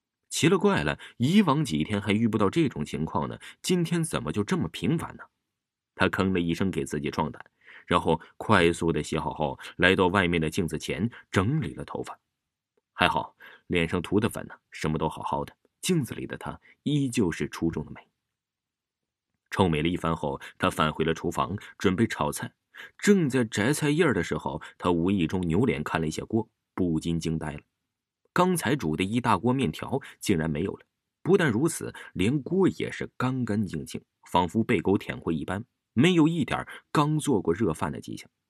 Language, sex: Chinese, male